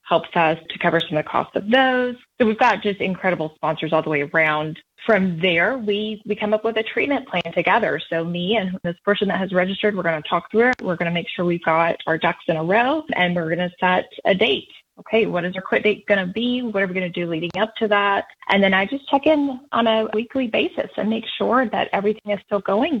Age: 20-39